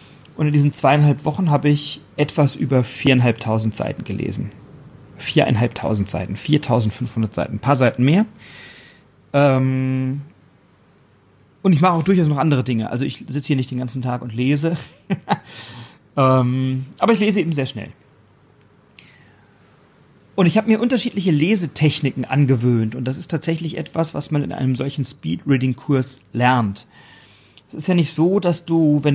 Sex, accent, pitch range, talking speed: male, German, 125-150 Hz, 145 wpm